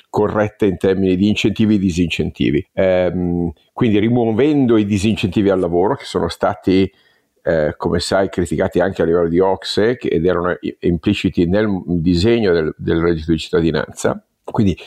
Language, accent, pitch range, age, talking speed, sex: Italian, native, 95-115 Hz, 50-69, 155 wpm, male